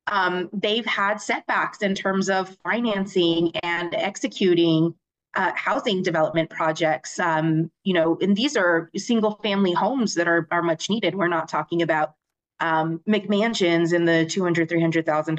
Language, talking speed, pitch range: English, 145 wpm, 165-200 Hz